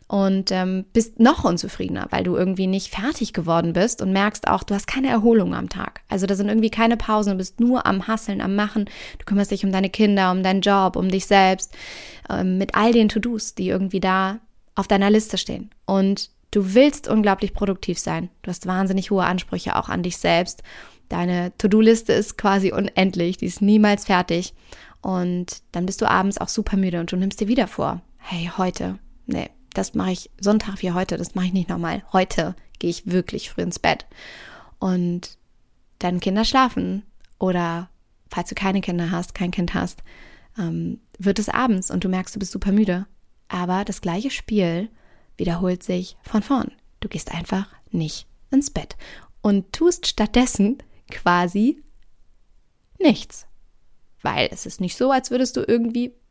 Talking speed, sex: 180 wpm, female